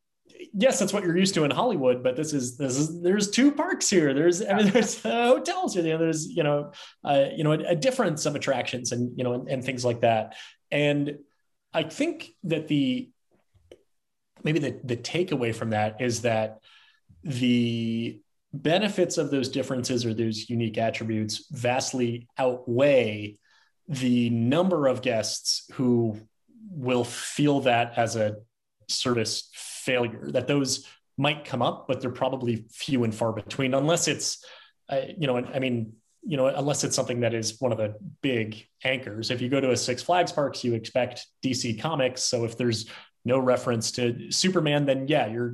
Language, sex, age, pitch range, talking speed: English, male, 30-49, 120-150 Hz, 175 wpm